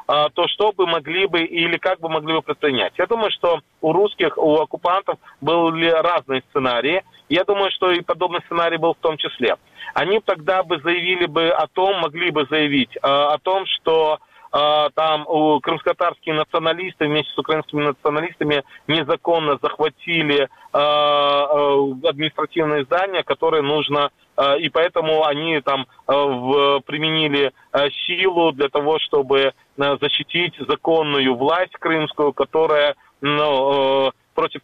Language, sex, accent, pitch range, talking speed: Ukrainian, male, native, 145-170 Hz, 125 wpm